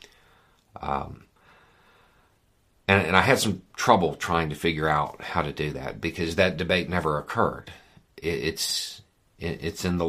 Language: English